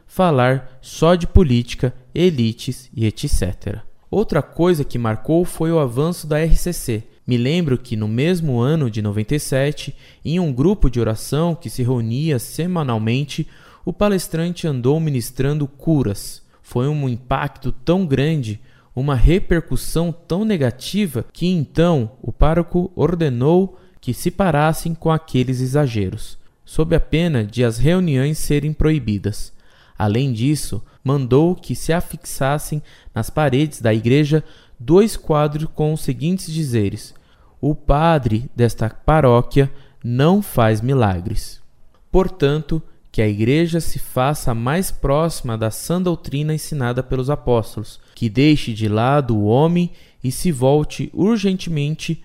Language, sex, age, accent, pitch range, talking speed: Portuguese, male, 20-39, Brazilian, 120-160 Hz, 130 wpm